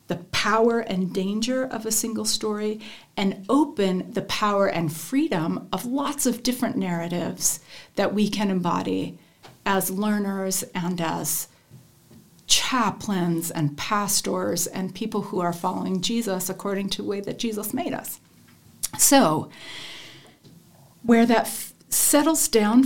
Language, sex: English, female